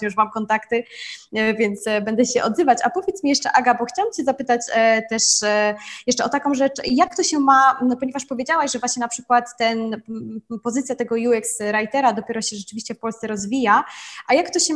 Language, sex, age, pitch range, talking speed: Polish, female, 20-39, 205-240 Hz, 185 wpm